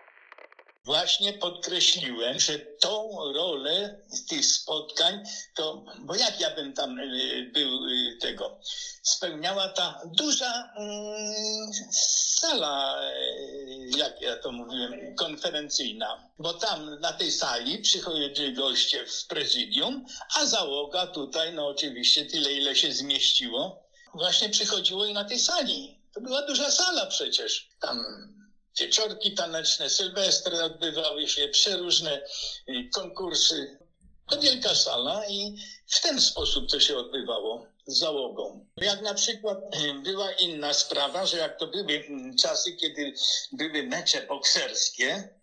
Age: 60-79